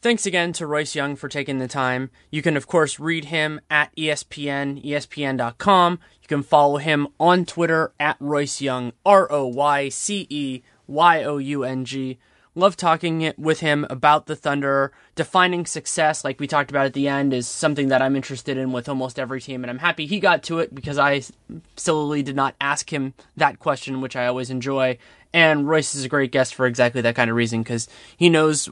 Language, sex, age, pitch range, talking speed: English, male, 20-39, 130-160 Hz, 185 wpm